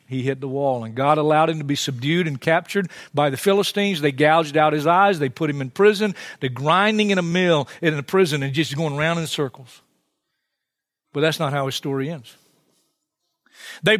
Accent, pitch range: American, 130-170 Hz